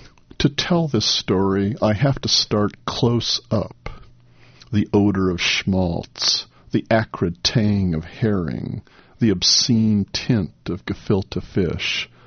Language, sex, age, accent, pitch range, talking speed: English, male, 50-69, American, 90-110 Hz, 120 wpm